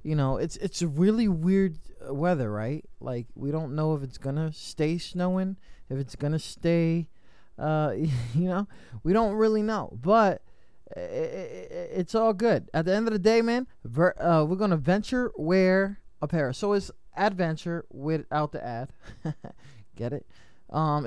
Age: 20-39